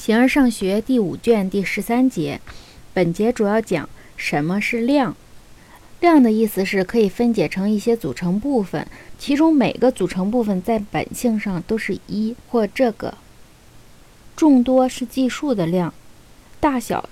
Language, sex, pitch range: Chinese, female, 190-250 Hz